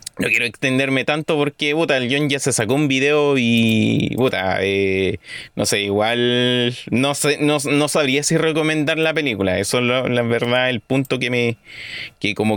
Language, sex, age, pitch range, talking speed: Spanish, male, 30-49, 105-150 Hz, 185 wpm